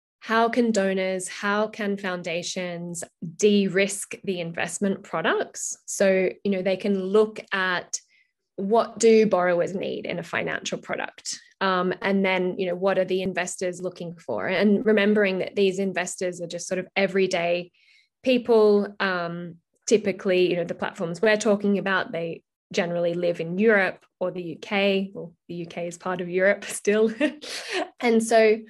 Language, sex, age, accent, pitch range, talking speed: English, female, 10-29, Australian, 180-215 Hz, 155 wpm